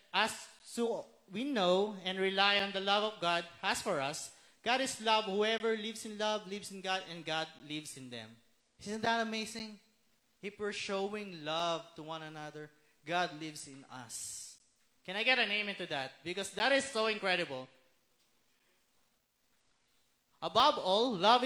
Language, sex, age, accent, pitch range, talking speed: English, male, 20-39, Filipino, 155-205 Hz, 160 wpm